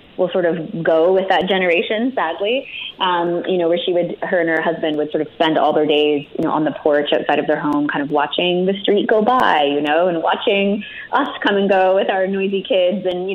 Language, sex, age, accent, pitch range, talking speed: English, female, 20-39, American, 155-195 Hz, 245 wpm